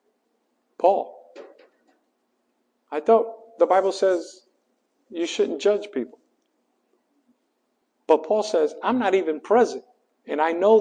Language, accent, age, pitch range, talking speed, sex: English, American, 50-69, 170-230 Hz, 110 wpm, male